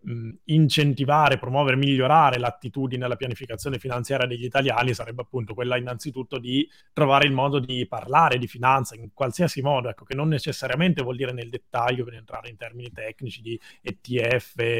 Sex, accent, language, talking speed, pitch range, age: male, native, Italian, 160 wpm, 120-145 Hz, 20-39